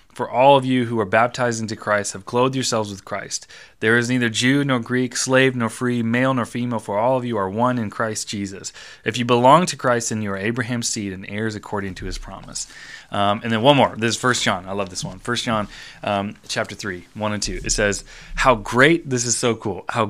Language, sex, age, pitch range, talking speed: English, male, 20-39, 105-125 Hz, 240 wpm